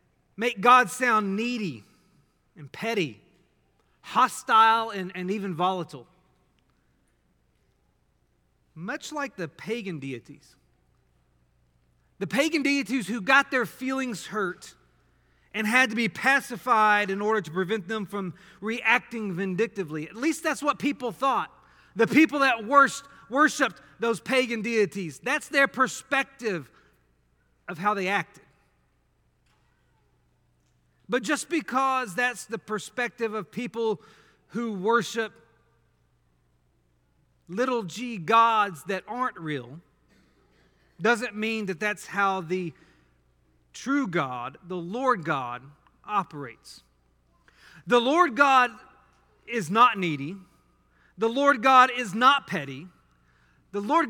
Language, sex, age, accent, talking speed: English, male, 40-59, American, 110 wpm